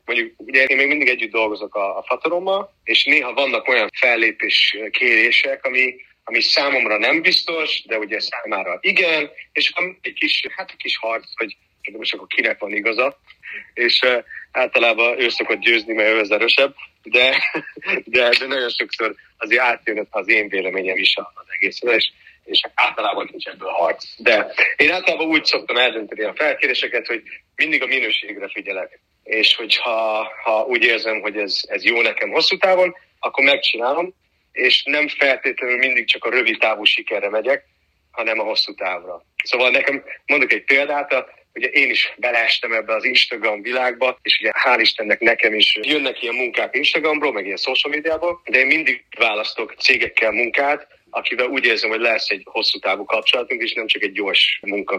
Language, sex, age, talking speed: Hungarian, male, 30-49, 170 wpm